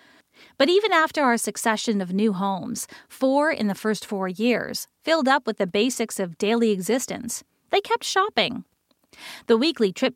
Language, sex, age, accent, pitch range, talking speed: English, female, 40-59, American, 210-290 Hz, 165 wpm